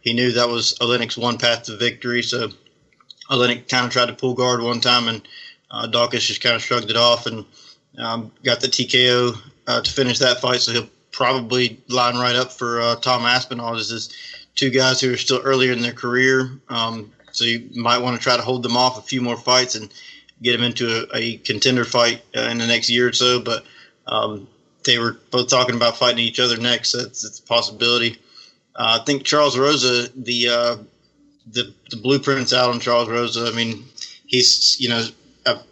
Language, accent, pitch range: English, American, 120-130 Hz